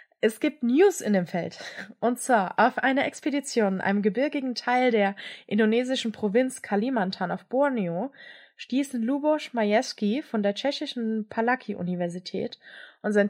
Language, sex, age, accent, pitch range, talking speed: German, female, 20-39, German, 200-265 Hz, 135 wpm